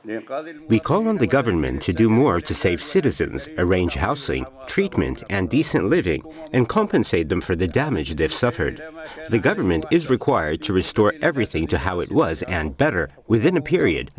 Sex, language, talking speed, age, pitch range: male, Urdu, 175 wpm, 50-69, 210-270 Hz